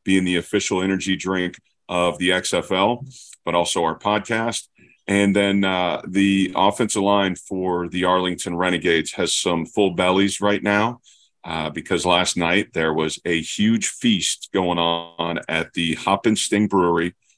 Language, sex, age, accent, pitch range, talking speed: English, male, 40-59, American, 85-100 Hz, 155 wpm